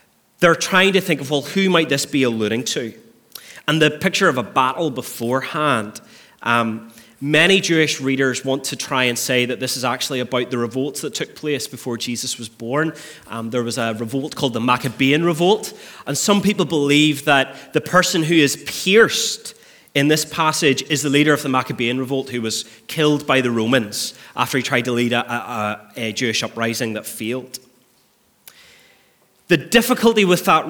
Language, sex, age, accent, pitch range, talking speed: English, male, 30-49, British, 120-155 Hz, 180 wpm